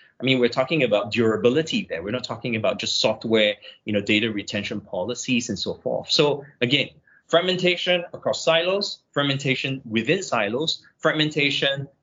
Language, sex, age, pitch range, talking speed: English, male, 20-39, 115-145 Hz, 150 wpm